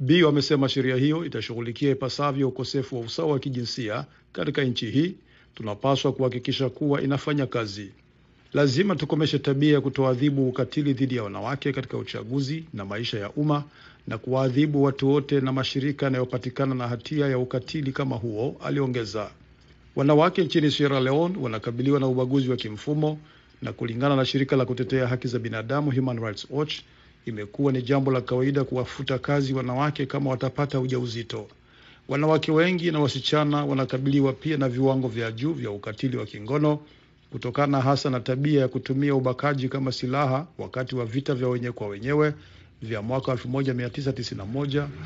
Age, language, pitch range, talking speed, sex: 50-69, Swahili, 125-145 Hz, 150 wpm, male